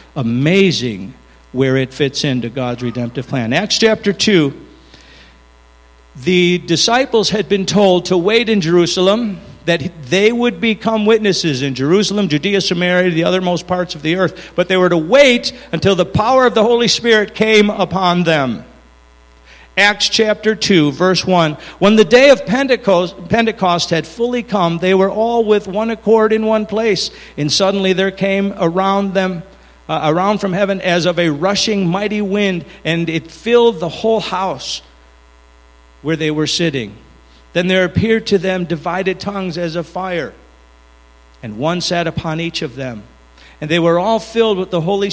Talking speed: 165 wpm